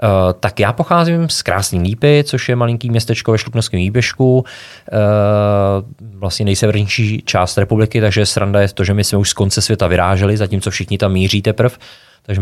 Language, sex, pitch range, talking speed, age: Czech, male, 100-110 Hz, 180 wpm, 20-39